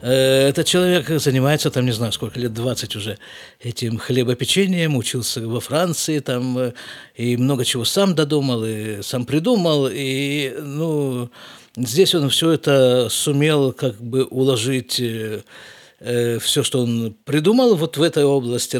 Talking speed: 135 wpm